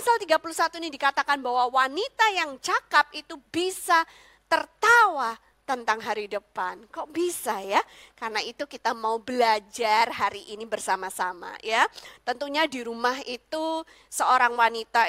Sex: female